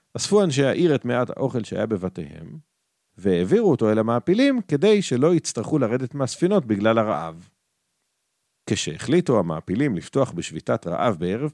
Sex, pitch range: male, 110-165 Hz